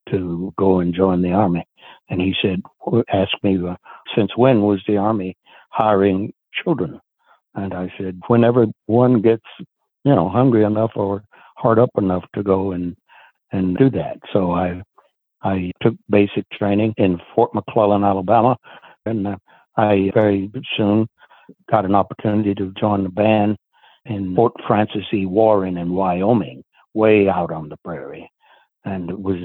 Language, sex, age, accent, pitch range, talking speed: English, male, 60-79, American, 100-135 Hz, 155 wpm